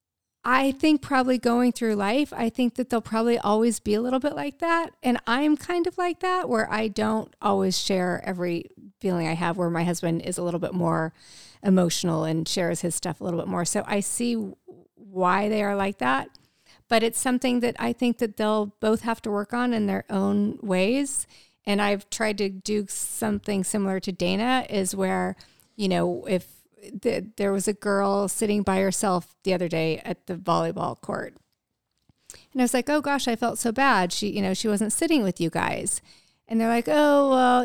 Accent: American